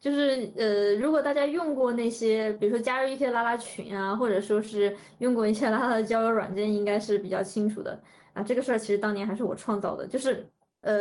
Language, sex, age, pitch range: Chinese, female, 20-39, 200-255 Hz